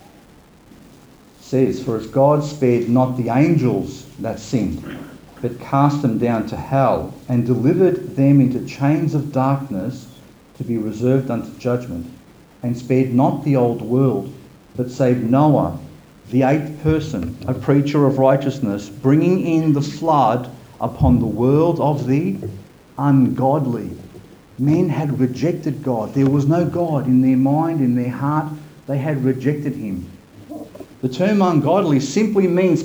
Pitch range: 120-150 Hz